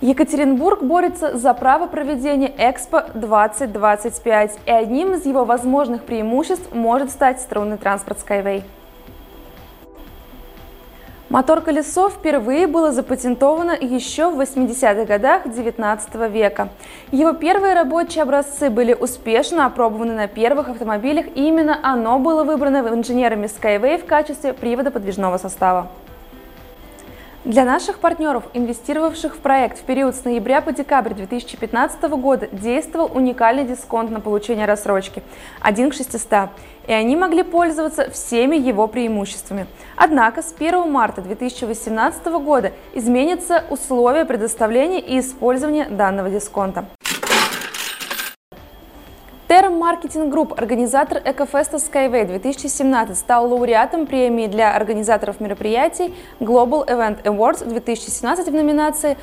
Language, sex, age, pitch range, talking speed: Russian, female, 20-39, 225-300 Hz, 115 wpm